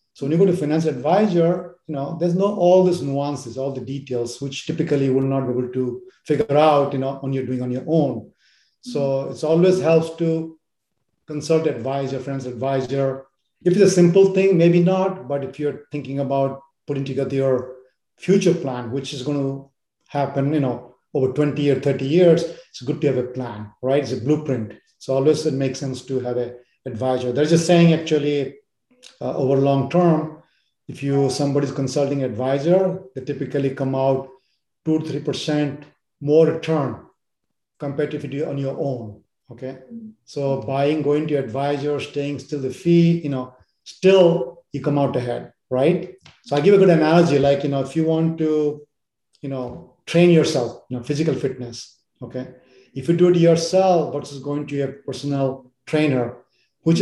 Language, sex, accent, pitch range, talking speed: English, male, Indian, 135-160 Hz, 185 wpm